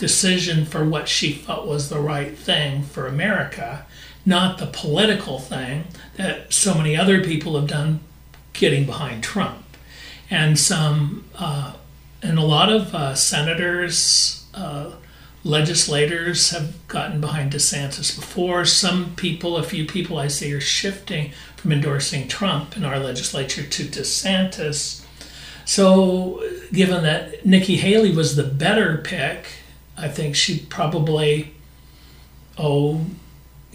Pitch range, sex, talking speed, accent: 140-170 Hz, male, 130 wpm, American